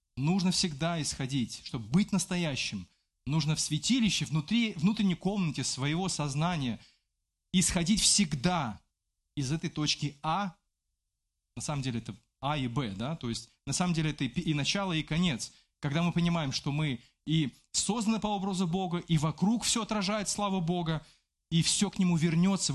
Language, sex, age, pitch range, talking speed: Russian, male, 20-39, 115-175 Hz, 155 wpm